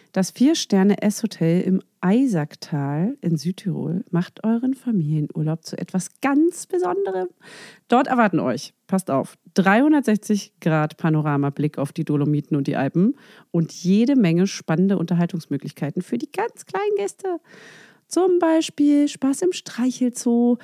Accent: German